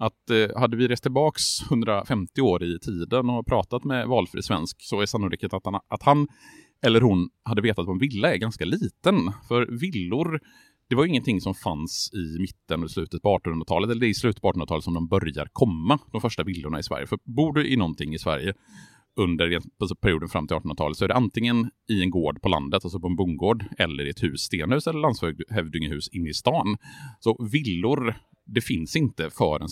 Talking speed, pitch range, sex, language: 200 wpm, 85-120 Hz, male, Swedish